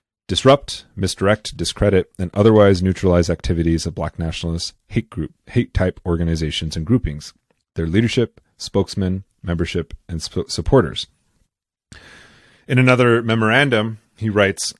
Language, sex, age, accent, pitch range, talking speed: English, male, 30-49, American, 85-110 Hz, 120 wpm